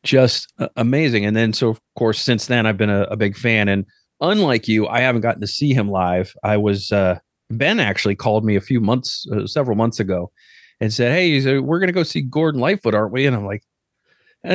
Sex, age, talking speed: male, 30-49, 230 wpm